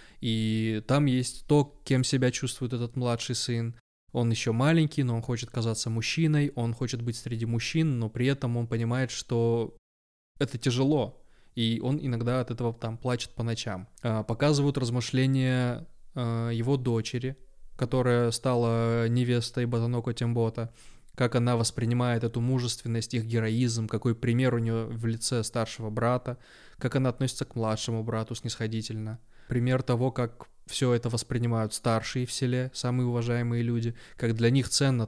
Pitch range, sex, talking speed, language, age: 115-130 Hz, male, 150 wpm, Russian, 20-39